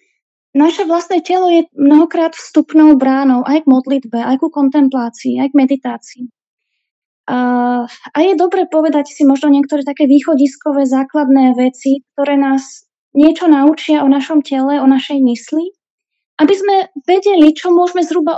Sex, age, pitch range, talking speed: female, 20-39, 255-300 Hz, 140 wpm